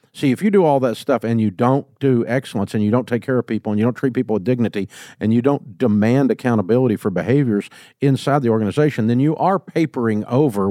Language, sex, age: English, male, 50-69